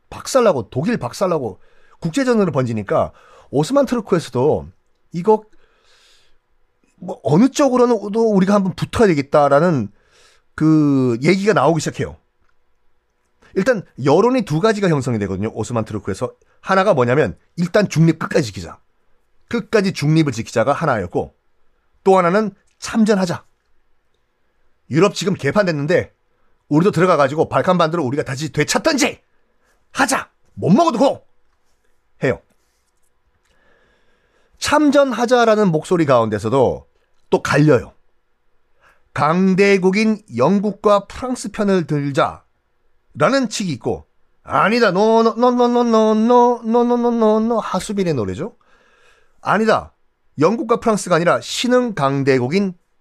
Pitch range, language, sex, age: 145-225 Hz, Korean, male, 40-59